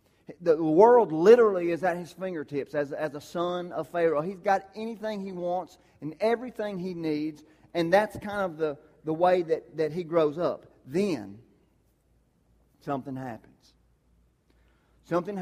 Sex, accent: male, American